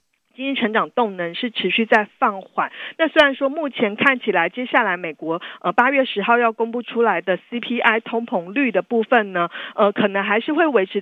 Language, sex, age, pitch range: Chinese, female, 50-69, 200-255 Hz